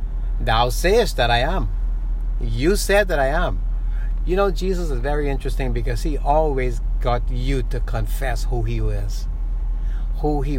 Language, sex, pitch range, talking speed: English, male, 110-150 Hz, 160 wpm